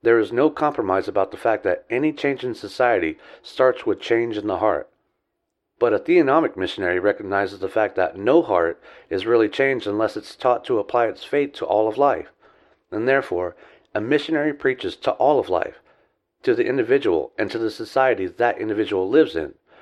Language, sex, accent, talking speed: English, male, American, 190 wpm